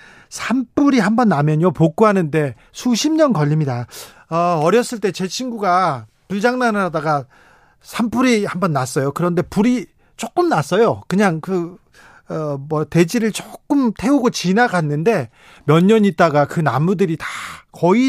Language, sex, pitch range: Korean, male, 155-210 Hz